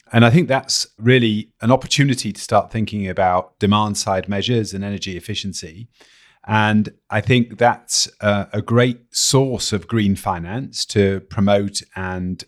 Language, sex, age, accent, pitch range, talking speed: English, male, 30-49, British, 95-115 Hz, 150 wpm